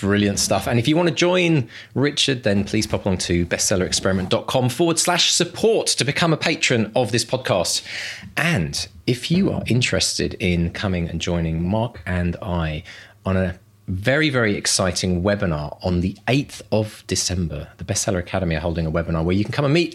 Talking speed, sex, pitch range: 185 wpm, male, 90-120 Hz